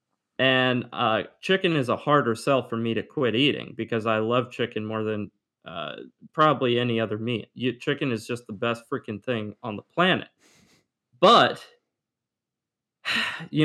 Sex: male